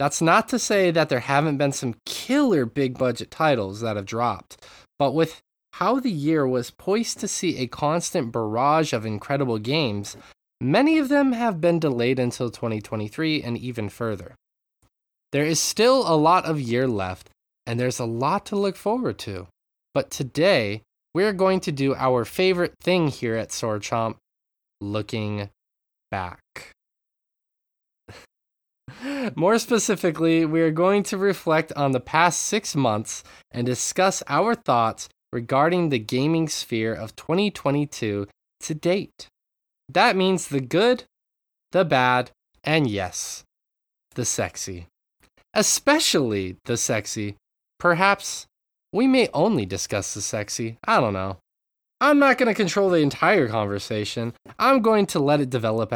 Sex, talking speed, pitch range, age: male, 145 wpm, 110-180 Hz, 20-39